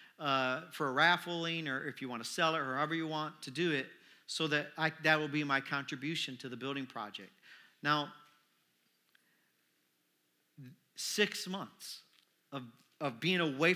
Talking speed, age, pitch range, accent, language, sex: 160 wpm, 50-69, 140-195 Hz, American, English, male